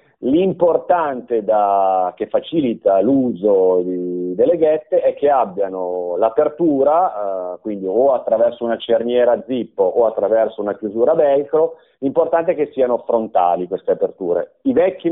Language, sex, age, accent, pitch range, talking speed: Italian, male, 40-59, native, 100-150 Hz, 130 wpm